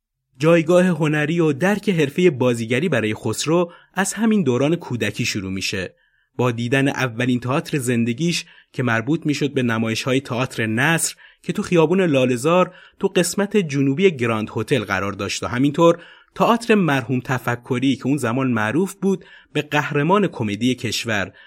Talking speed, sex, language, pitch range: 145 wpm, male, Persian, 120-170 Hz